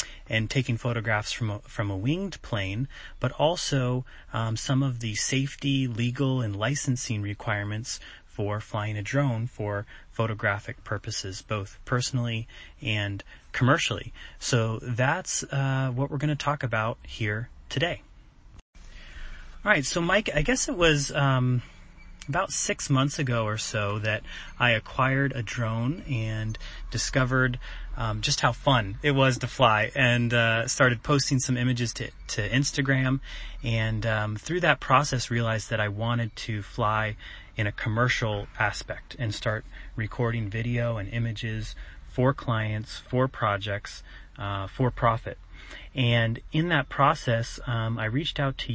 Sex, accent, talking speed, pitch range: male, American, 145 wpm, 110-135 Hz